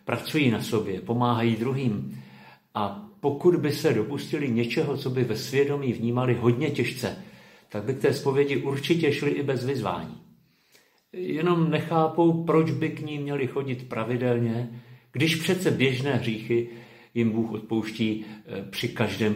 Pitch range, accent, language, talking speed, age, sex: 110-135 Hz, native, Czech, 145 wpm, 50-69, male